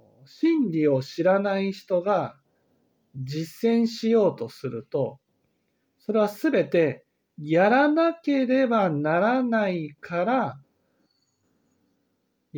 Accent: native